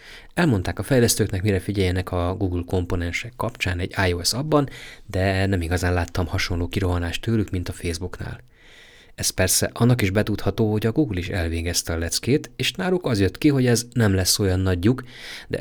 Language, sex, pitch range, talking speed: Hungarian, male, 90-115 Hz, 175 wpm